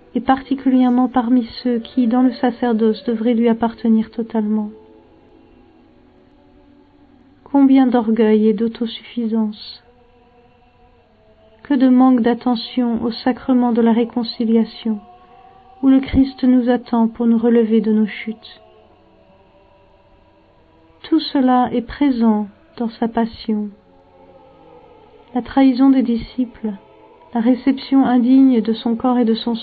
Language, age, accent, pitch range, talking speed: French, 50-69, French, 220-255 Hz, 115 wpm